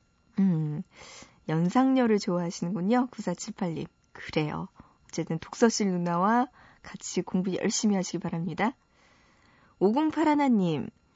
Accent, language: native, Korean